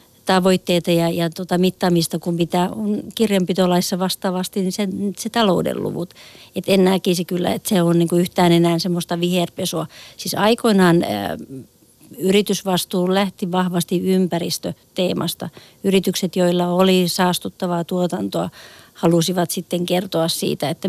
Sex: female